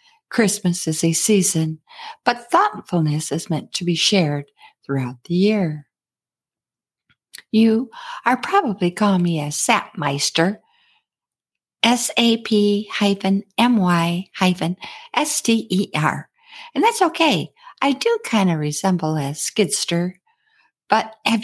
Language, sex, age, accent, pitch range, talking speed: English, female, 50-69, American, 160-235 Hz, 95 wpm